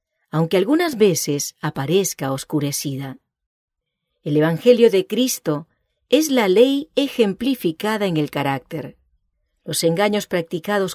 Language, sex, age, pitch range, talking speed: English, female, 40-59, 155-230 Hz, 105 wpm